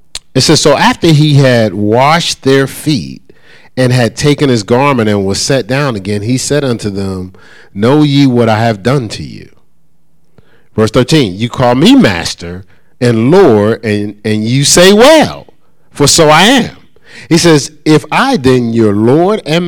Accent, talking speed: American, 170 wpm